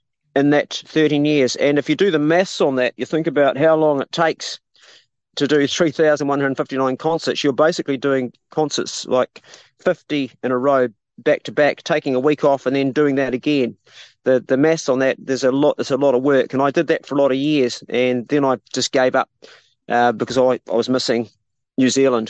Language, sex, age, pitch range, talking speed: English, male, 40-59, 125-145 Hz, 230 wpm